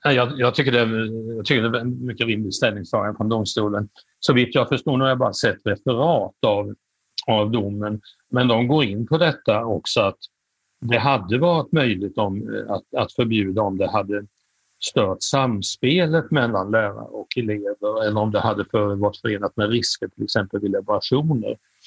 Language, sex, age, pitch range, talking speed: Swedish, male, 60-79, 105-125 Hz, 175 wpm